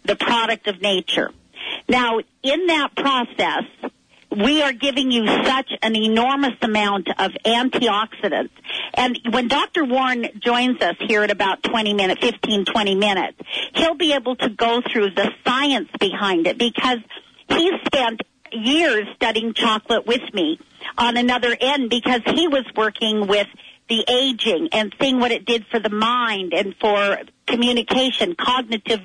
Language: English